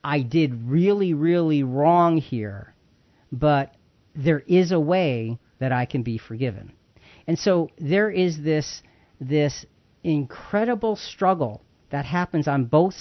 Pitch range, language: 135-185 Hz, English